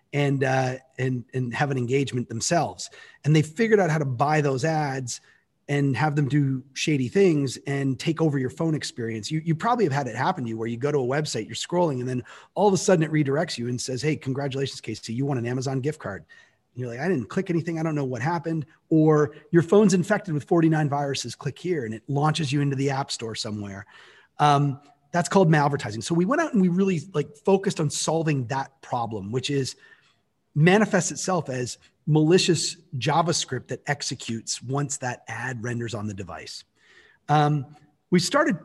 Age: 30-49